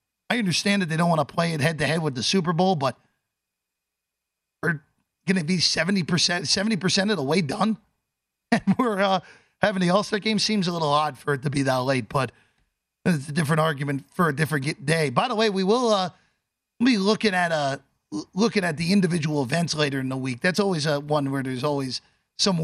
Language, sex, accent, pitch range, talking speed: English, male, American, 135-195 Hz, 205 wpm